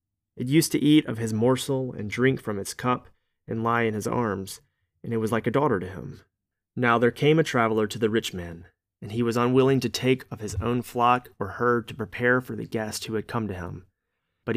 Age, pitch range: 30-49, 100-120 Hz